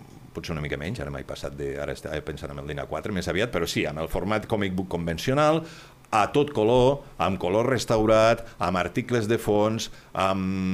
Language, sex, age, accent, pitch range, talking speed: Spanish, male, 50-69, Spanish, 90-115 Hz, 190 wpm